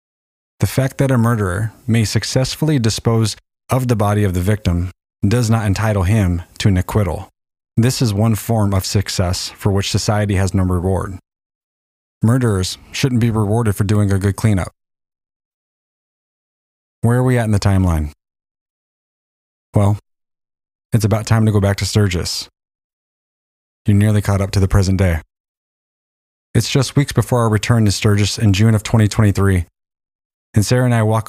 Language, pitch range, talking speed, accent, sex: English, 95-115 Hz, 160 wpm, American, male